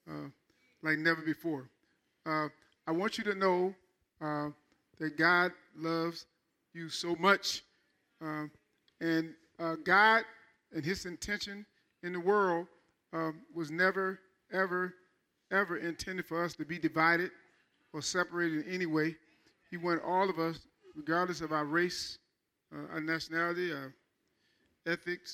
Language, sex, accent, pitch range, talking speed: English, male, American, 155-180 Hz, 135 wpm